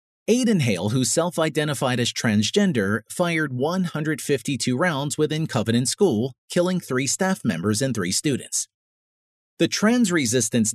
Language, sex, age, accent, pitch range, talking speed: English, male, 40-59, American, 120-175 Hz, 125 wpm